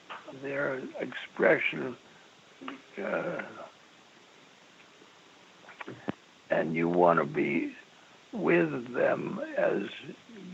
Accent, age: American, 60-79